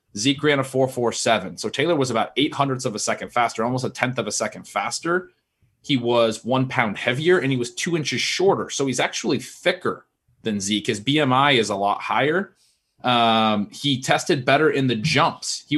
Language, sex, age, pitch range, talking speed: English, male, 20-39, 115-150 Hz, 205 wpm